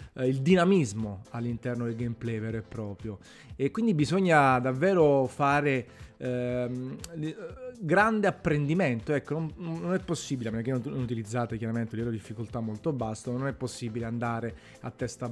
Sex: male